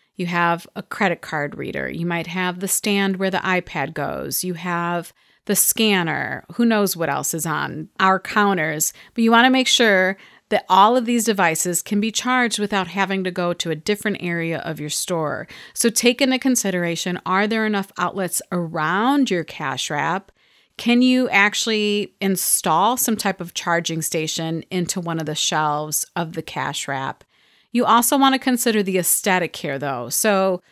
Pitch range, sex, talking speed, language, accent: 170-225 Hz, female, 180 wpm, English, American